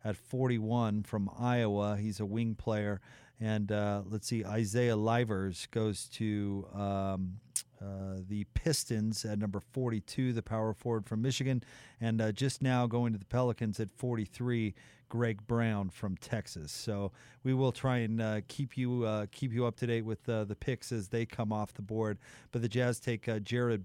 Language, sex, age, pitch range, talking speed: English, male, 40-59, 110-125 Hz, 180 wpm